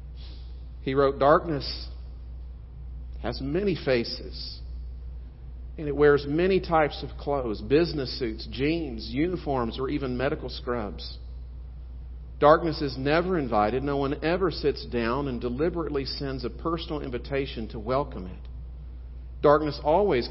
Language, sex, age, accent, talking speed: English, male, 50-69, American, 120 wpm